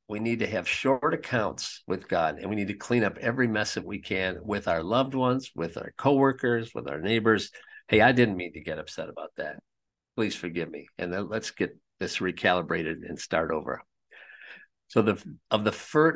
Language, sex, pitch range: English, male, 100-135 Hz